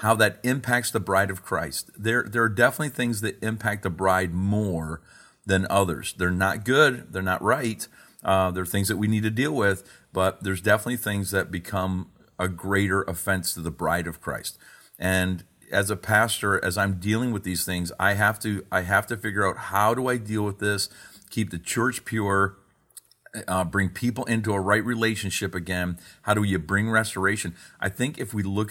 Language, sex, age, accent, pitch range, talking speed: English, male, 40-59, American, 95-110 Hz, 195 wpm